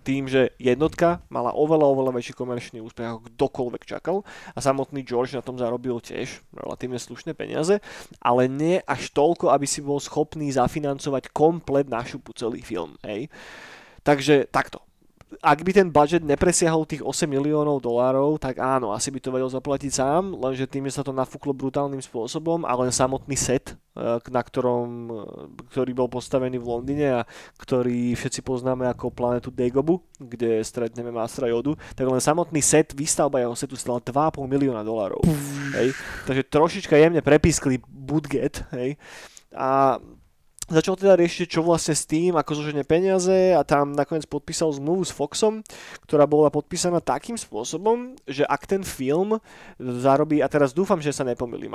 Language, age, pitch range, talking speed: Slovak, 20-39, 130-160 Hz, 160 wpm